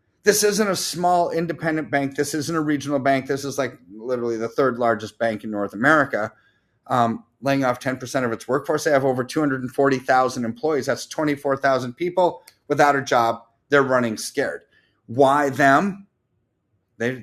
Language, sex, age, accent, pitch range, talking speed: English, male, 30-49, American, 125-155 Hz, 160 wpm